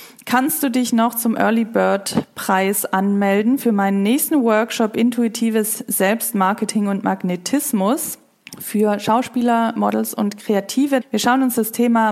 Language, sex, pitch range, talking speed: German, female, 200-235 Hz, 125 wpm